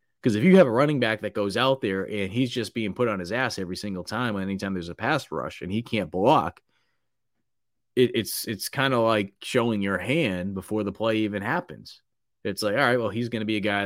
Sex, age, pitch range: male, 30-49, 90-115 Hz